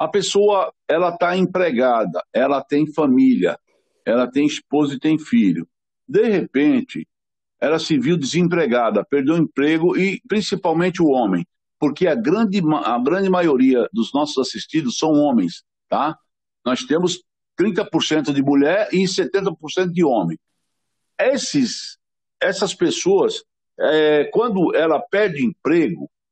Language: Portuguese